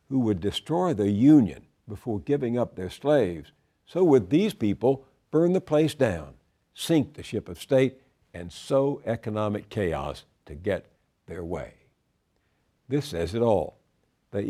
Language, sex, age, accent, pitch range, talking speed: English, male, 60-79, American, 100-135 Hz, 150 wpm